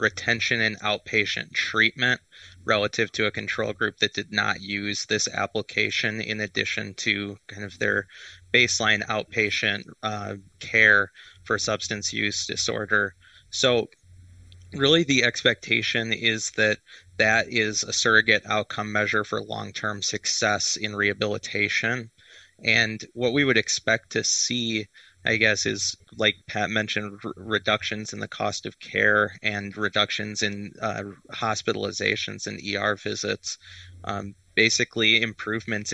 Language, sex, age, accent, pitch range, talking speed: English, male, 20-39, American, 100-110 Hz, 125 wpm